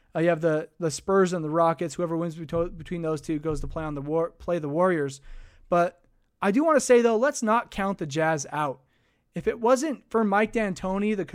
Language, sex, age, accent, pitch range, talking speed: English, male, 20-39, American, 160-200 Hz, 225 wpm